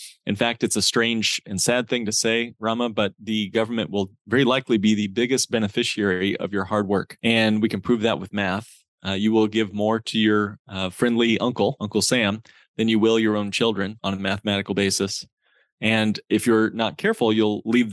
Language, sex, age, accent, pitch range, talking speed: English, male, 30-49, American, 100-120 Hz, 205 wpm